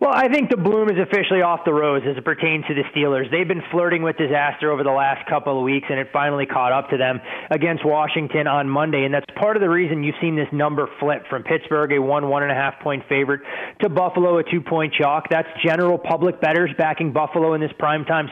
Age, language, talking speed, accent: 20-39, English, 230 wpm, American